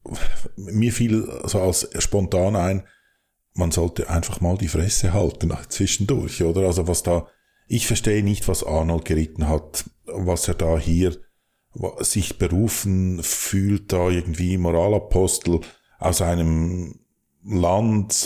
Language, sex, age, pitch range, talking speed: German, male, 50-69, 90-115 Hz, 125 wpm